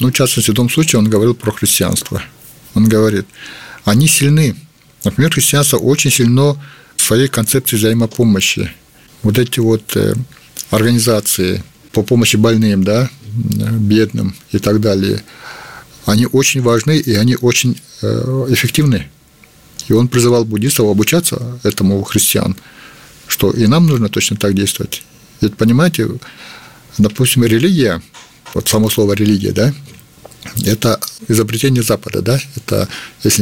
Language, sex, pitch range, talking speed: Russian, male, 105-125 Hz, 130 wpm